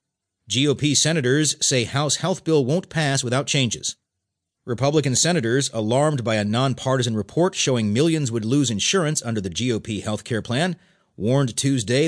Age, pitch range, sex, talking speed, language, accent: 40-59, 110-150 Hz, male, 150 wpm, English, American